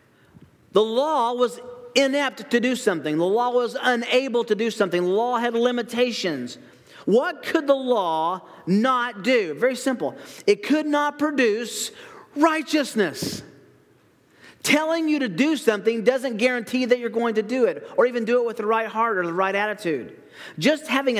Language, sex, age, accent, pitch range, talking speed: English, male, 40-59, American, 180-255 Hz, 165 wpm